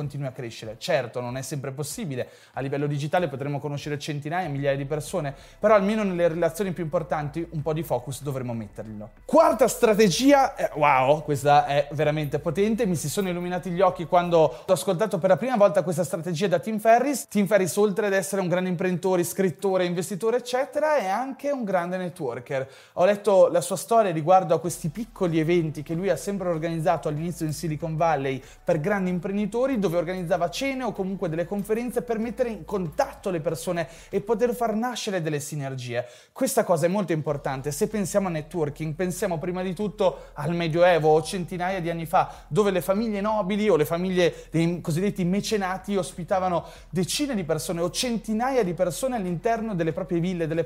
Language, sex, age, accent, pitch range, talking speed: Italian, male, 20-39, native, 165-210 Hz, 180 wpm